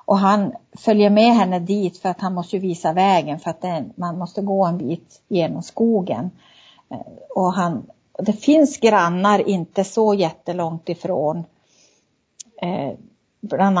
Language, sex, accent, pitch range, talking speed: Swedish, female, native, 175-205 Hz, 130 wpm